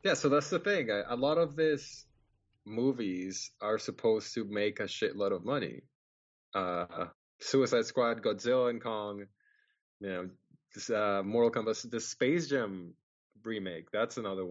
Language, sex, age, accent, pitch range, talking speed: English, male, 20-39, American, 100-125 Hz, 150 wpm